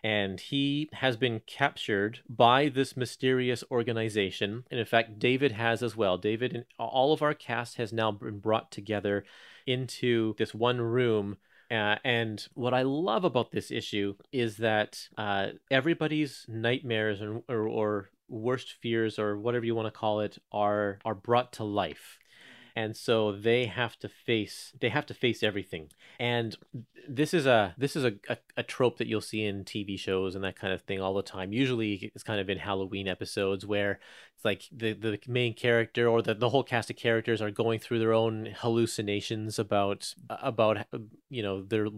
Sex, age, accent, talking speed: male, 30-49, American, 180 wpm